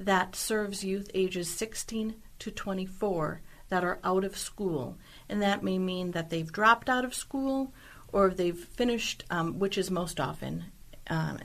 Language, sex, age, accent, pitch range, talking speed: English, female, 50-69, American, 165-200 Hz, 160 wpm